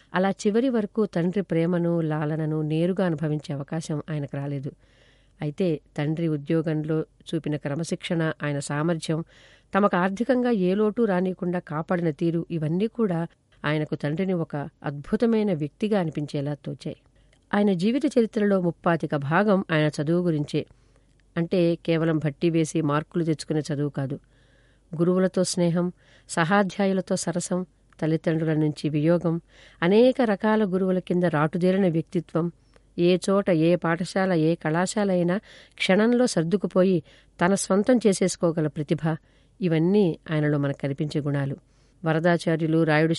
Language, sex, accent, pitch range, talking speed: Telugu, female, native, 155-190 Hz, 115 wpm